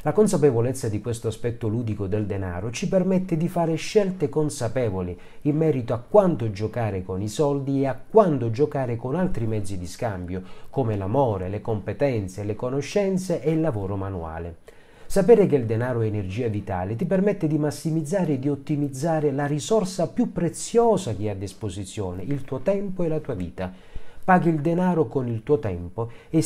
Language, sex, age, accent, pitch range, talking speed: Italian, male, 40-59, native, 105-155 Hz, 175 wpm